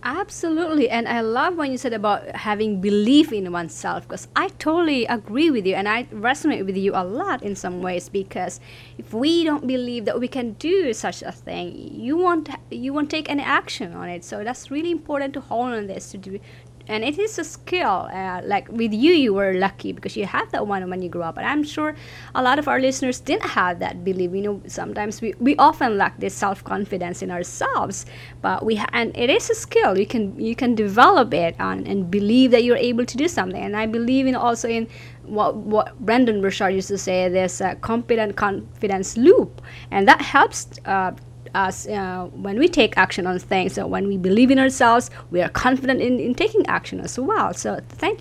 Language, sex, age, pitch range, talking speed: English, female, 20-39, 185-265 Hz, 215 wpm